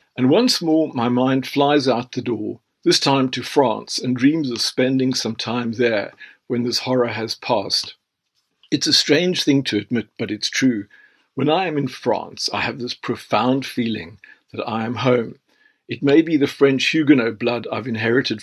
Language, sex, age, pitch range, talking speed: English, male, 50-69, 115-140 Hz, 185 wpm